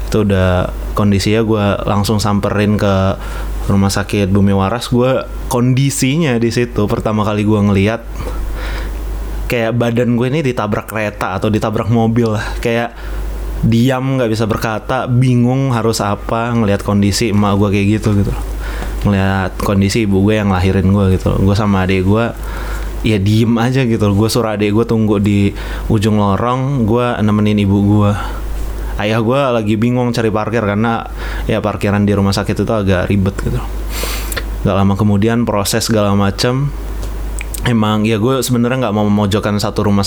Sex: male